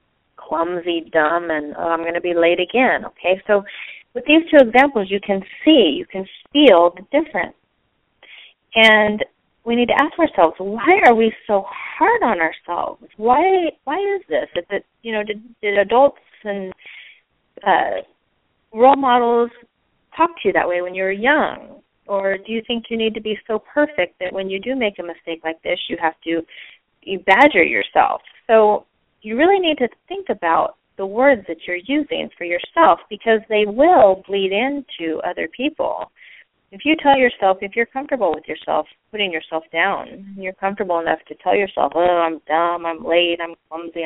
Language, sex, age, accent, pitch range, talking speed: English, female, 30-49, American, 175-245 Hz, 180 wpm